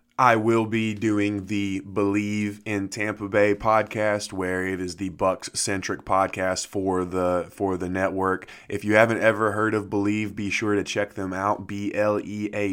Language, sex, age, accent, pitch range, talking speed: English, male, 20-39, American, 90-105 Hz, 185 wpm